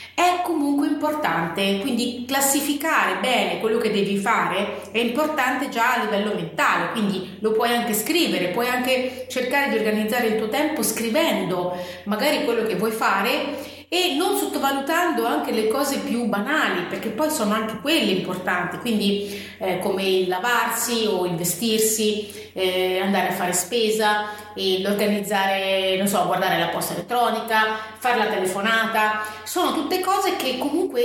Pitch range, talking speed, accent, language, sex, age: 200-270 Hz, 150 wpm, native, Italian, female, 30-49